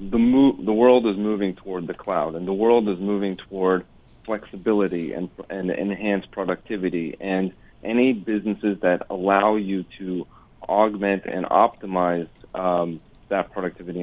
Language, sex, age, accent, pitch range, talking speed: English, male, 30-49, American, 90-105 Hz, 140 wpm